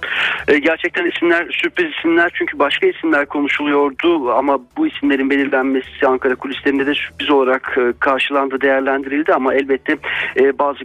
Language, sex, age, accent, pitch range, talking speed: Turkish, male, 40-59, native, 135-165 Hz, 120 wpm